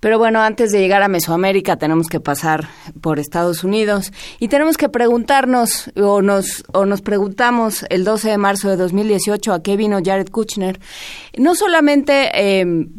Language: Spanish